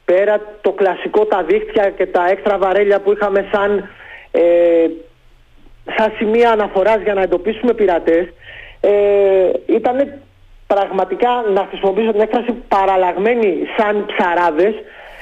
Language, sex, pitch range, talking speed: Greek, male, 190-240 Hz, 120 wpm